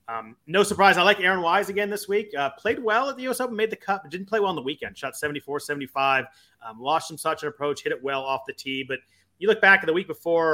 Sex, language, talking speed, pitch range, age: male, English, 285 wpm, 130-180 Hz, 30-49